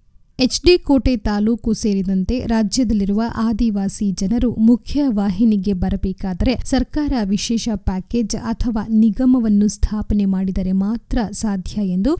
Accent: native